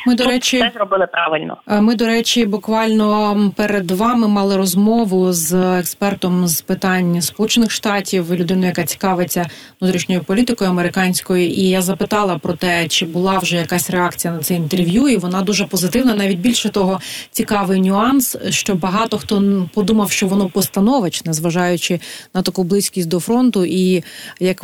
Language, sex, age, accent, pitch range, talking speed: Ukrainian, female, 30-49, native, 185-215 Hz, 150 wpm